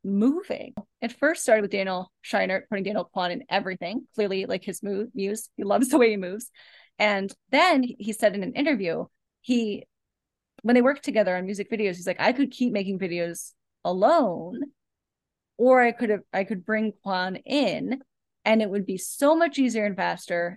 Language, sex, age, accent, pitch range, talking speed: English, female, 10-29, American, 195-260 Hz, 185 wpm